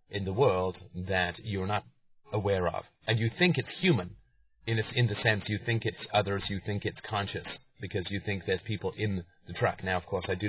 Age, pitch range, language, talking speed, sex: 30-49, 90-105 Hz, English, 225 wpm, male